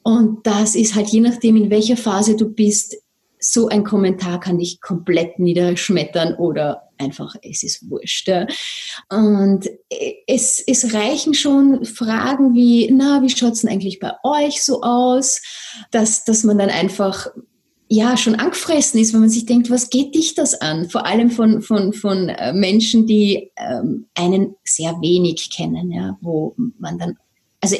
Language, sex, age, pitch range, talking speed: German, female, 30-49, 185-240 Hz, 160 wpm